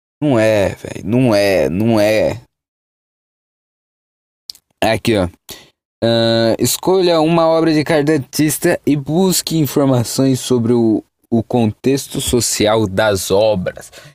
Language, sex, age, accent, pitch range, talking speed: Portuguese, male, 20-39, Brazilian, 105-150 Hz, 100 wpm